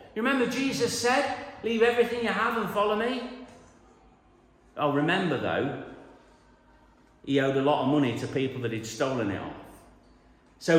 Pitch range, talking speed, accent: 140-220 Hz, 155 wpm, British